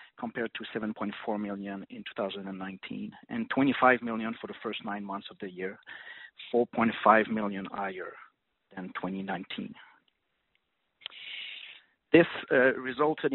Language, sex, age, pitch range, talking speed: English, male, 40-59, 105-130 Hz, 110 wpm